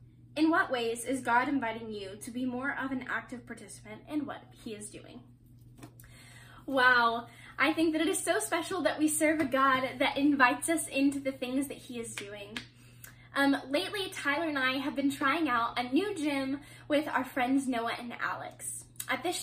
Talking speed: 190 wpm